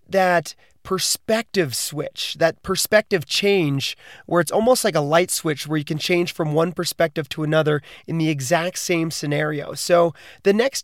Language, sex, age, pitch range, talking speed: English, male, 30-49, 150-185 Hz, 165 wpm